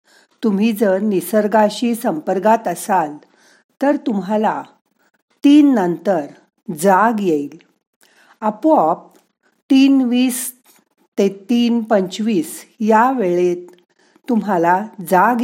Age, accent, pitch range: 50-69, native, 185-255 Hz